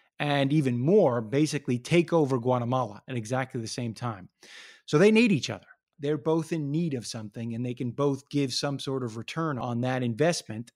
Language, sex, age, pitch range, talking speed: English, male, 30-49, 130-165 Hz, 195 wpm